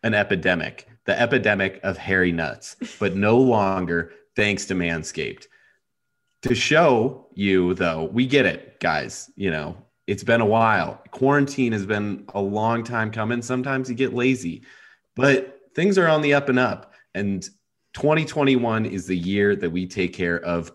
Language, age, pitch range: English, 30-49, 85-115 Hz